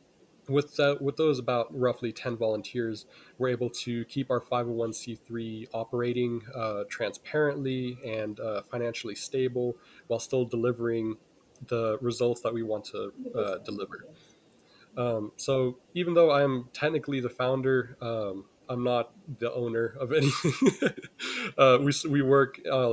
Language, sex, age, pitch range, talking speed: English, male, 20-39, 115-135 Hz, 135 wpm